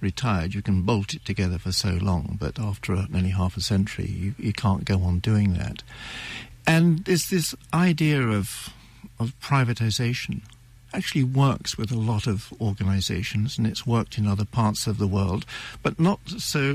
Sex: male